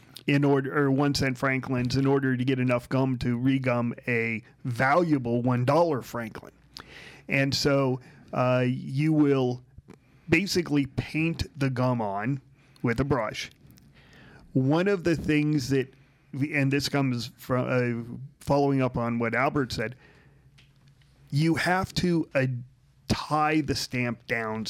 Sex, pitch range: male, 125-140 Hz